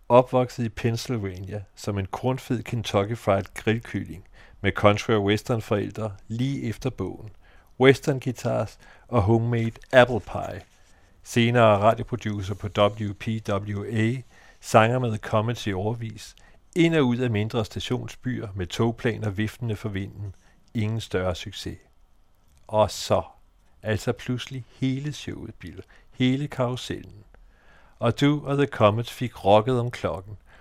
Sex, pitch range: male, 100-125 Hz